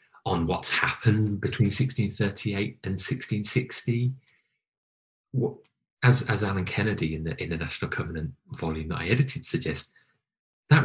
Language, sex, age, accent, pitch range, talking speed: English, male, 20-39, British, 95-130 Hz, 120 wpm